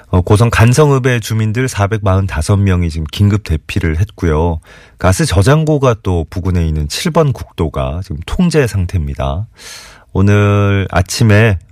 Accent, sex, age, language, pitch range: native, male, 30-49, Korean, 80-110 Hz